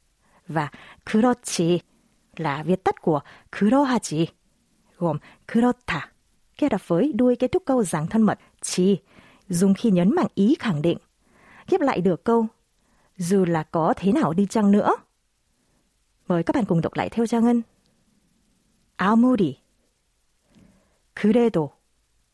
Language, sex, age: Vietnamese, female, 30-49